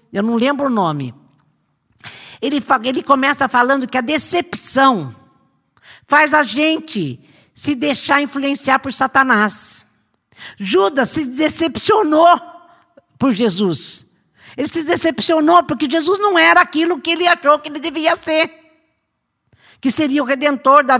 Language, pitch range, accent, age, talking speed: Portuguese, 170-270 Hz, Brazilian, 50-69, 130 wpm